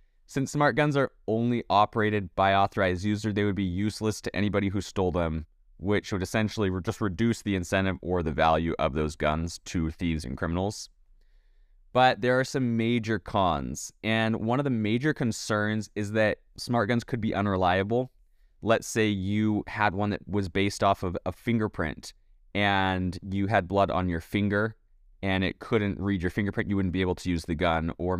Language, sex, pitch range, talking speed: English, male, 90-110 Hz, 185 wpm